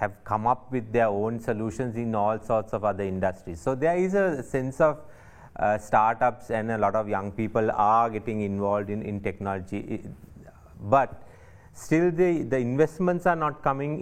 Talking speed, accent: 175 wpm, Indian